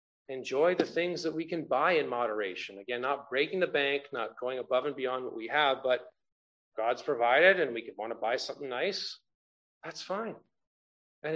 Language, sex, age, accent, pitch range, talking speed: English, male, 40-59, American, 115-150 Hz, 190 wpm